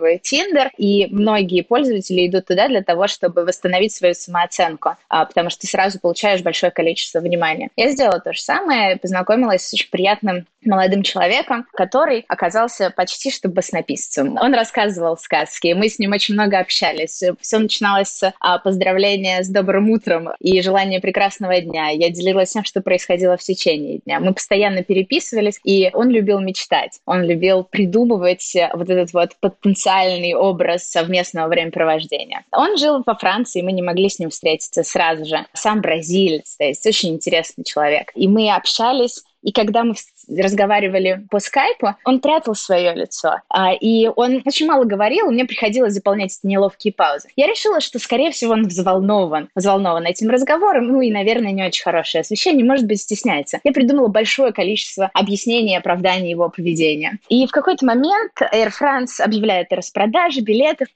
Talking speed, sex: 160 wpm, female